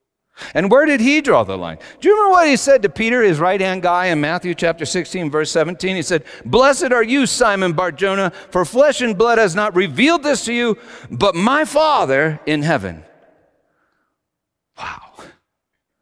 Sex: male